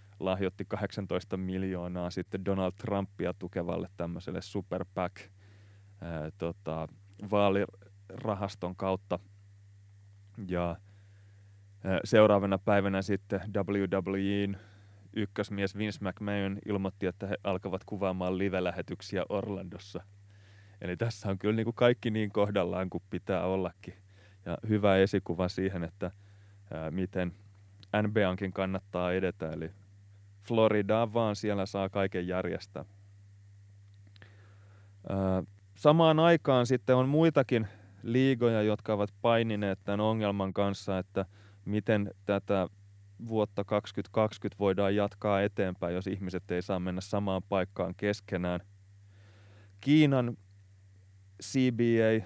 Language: Finnish